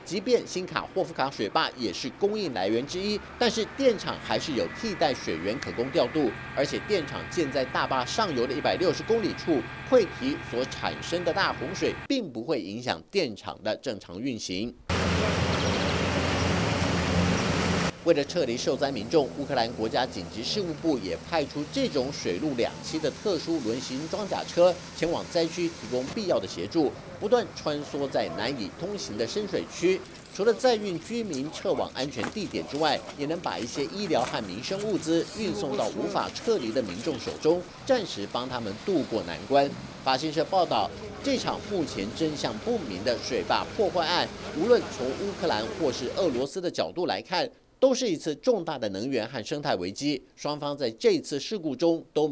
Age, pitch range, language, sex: 50-69, 140-235 Hz, Chinese, male